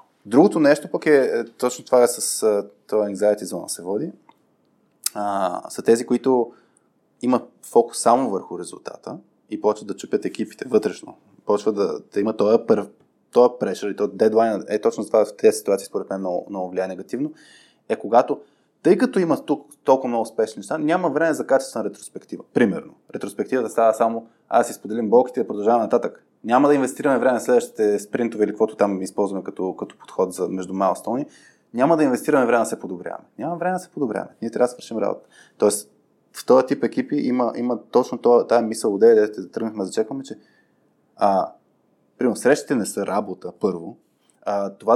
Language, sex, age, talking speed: Bulgarian, male, 20-39, 180 wpm